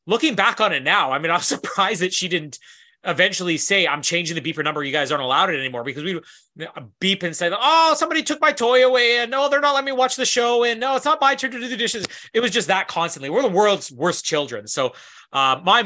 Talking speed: 255 wpm